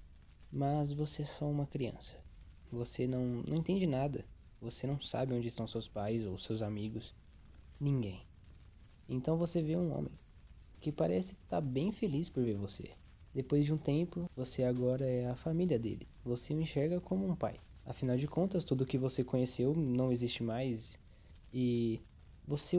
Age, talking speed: 10-29, 170 wpm